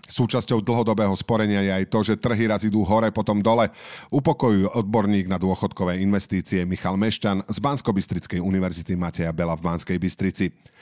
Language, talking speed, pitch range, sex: Slovak, 155 wpm, 100-125 Hz, male